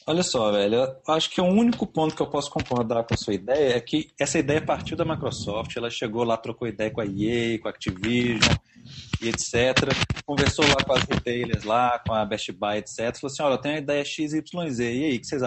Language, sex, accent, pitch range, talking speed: Portuguese, male, Brazilian, 115-180 Hz, 235 wpm